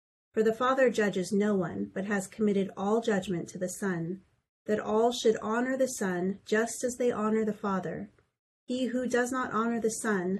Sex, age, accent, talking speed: female, 30-49, American, 190 wpm